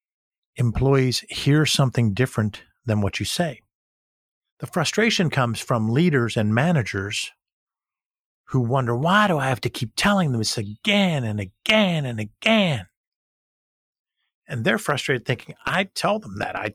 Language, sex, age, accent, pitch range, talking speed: English, male, 50-69, American, 110-150 Hz, 145 wpm